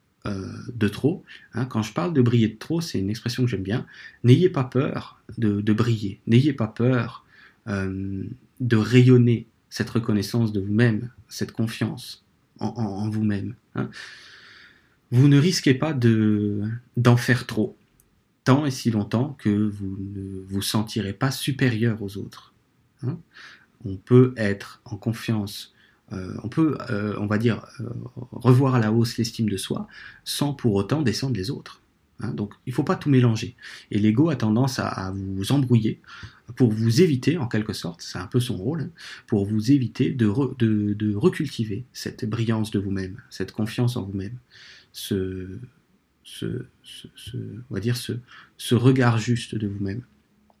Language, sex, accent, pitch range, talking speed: French, male, French, 105-125 Hz, 155 wpm